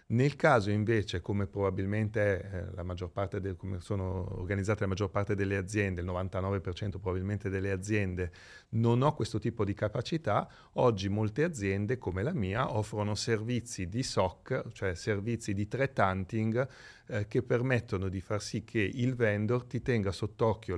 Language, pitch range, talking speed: Italian, 95-115 Hz, 160 wpm